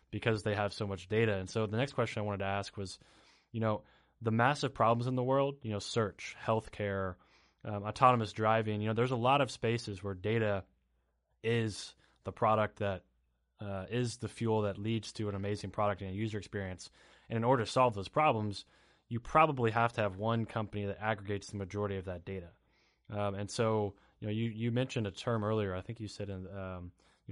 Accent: American